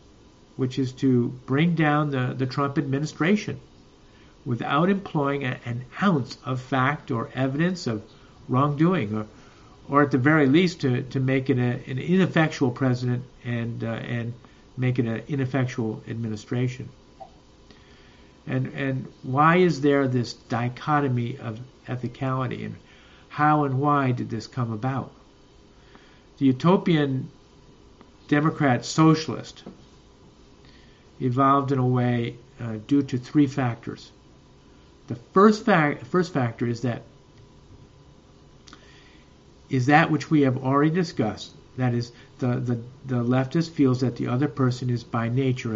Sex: male